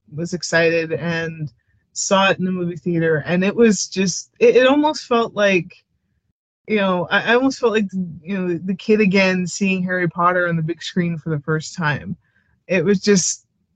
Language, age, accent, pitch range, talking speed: English, 20-39, American, 165-195 Hz, 190 wpm